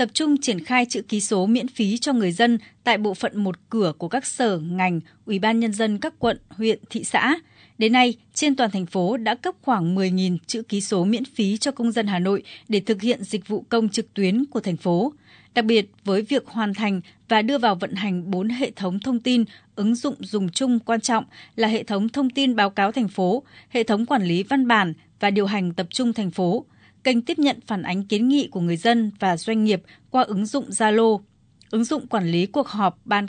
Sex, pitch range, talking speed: female, 195-245 Hz, 235 wpm